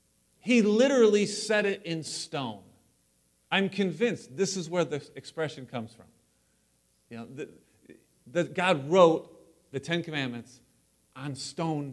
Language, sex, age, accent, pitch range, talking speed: English, male, 40-59, American, 135-185 Hz, 130 wpm